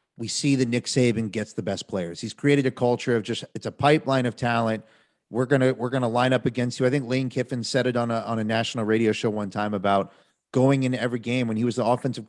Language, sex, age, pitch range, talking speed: English, male, 30-49, 110-130 Hz, 260 wpm